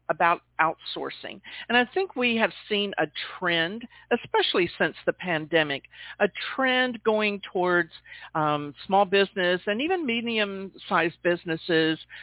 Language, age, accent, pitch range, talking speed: English, 50-69, American, 170-235 Hz, 125 wpm